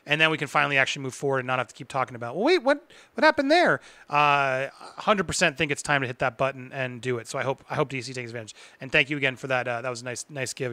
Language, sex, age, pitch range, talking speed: English, male, 30-49, 145-190 Hz, 300 wpm